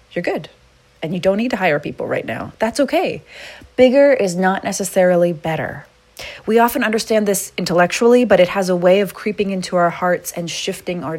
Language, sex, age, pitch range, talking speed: English, female, 30-49, 155-195 Hz, 195 wpm